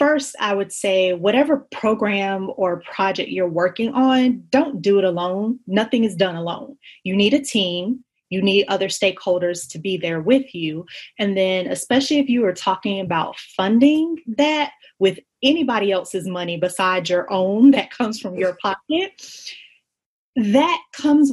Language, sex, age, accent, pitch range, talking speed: English, female, 30-49, American, 185-230 Hz, 160 wpm